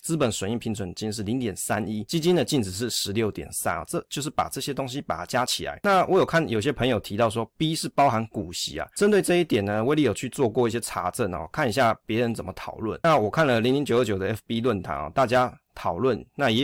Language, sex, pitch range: Chinese, male, 100-135 Hz